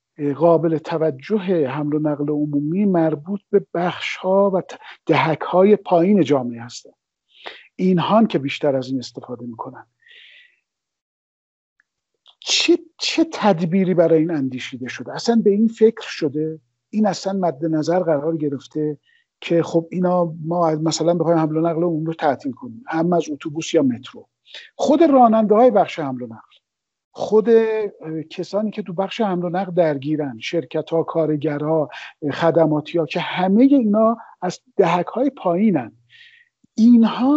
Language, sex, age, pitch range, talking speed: Persian, male, 50-69, 155-215 Hz, 130 wpm